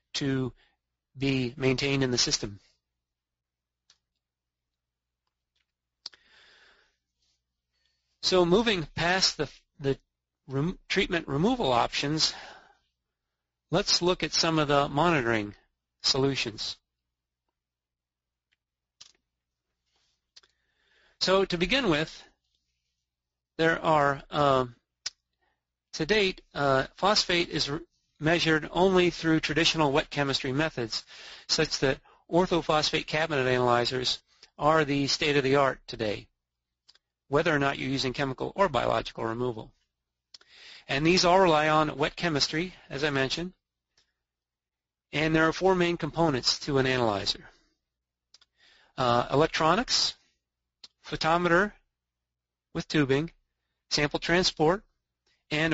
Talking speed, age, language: 95 wpm, 40-59, English